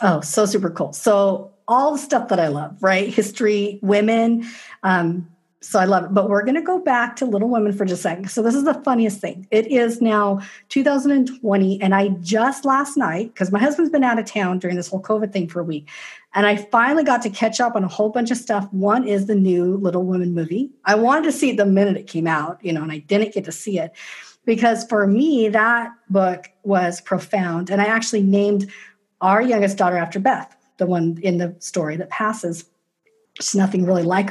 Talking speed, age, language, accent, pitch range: 225 wpm, 50-69, English, American, 180-225 Hz